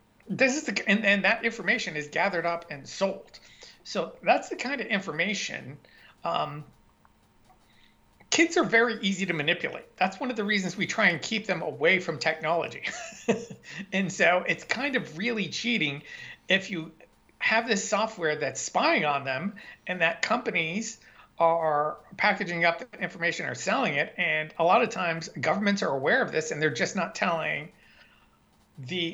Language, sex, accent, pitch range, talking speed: English, male, American, 165-210 Hz, 165 wpm